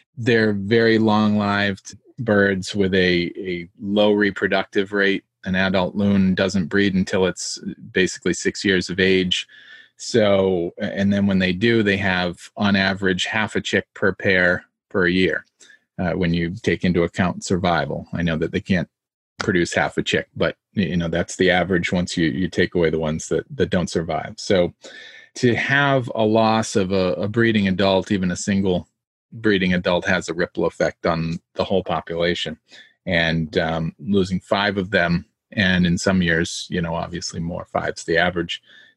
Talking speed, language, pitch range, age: 175 wpm, English, 90-105 Hz, 30-49